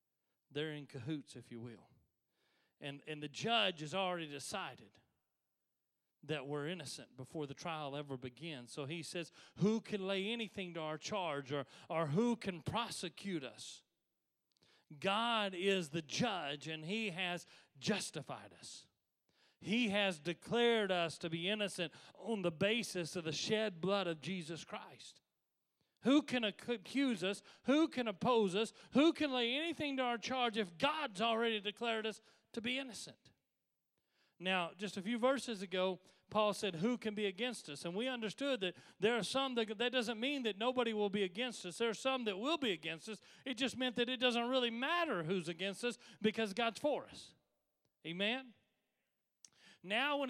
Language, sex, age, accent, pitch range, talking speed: English, male, 40-59, American, 175-250 Hz, 170 wpm